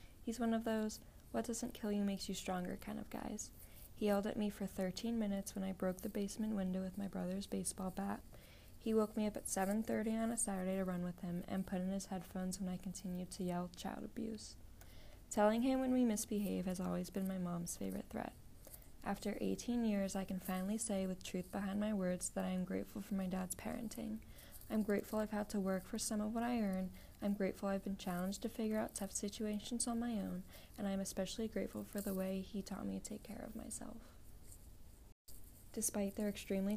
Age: 20-39